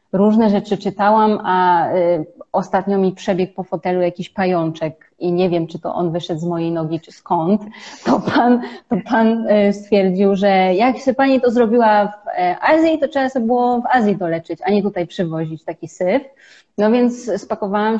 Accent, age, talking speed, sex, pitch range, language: native, 30-49, 170 wpm, female, 185-235 Hz, Polish